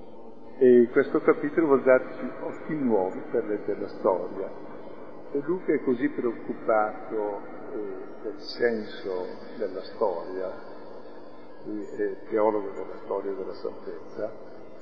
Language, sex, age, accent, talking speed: Italian, male, 50-69, native, 115 wpm